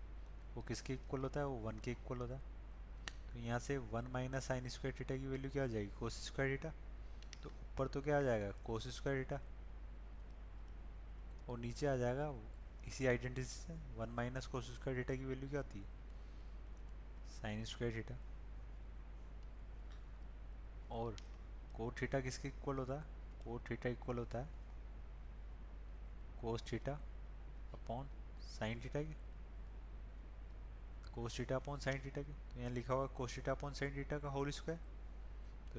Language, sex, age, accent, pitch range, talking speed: Hindi, male, 20-39, native, 110-135 Hz, 155 wpm